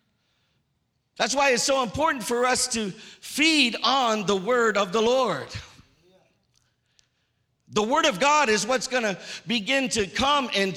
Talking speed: 150 wpm